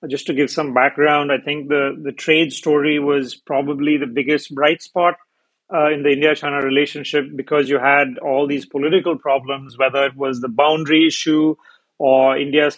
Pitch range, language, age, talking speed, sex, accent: 145-160 Hz, English, 30-49, 175 wpm, male, Indian